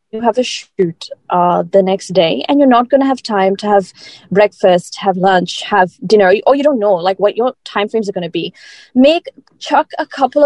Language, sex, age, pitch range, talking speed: Hindi, female, 20-39, 195-255 Hz, 225 wpm